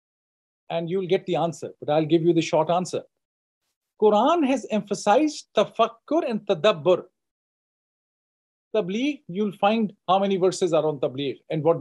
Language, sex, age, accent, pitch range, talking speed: English, male, 40-59, Indian, 185-255 Hz, 145 wpm